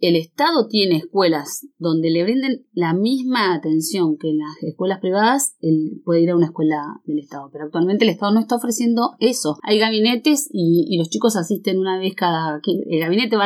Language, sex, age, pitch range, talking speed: Spanish, female, 20-39, 160-205 Hz, 200 wpm